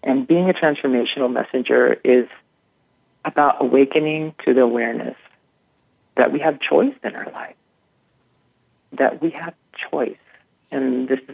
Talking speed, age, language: 125 wpm, 40-59, English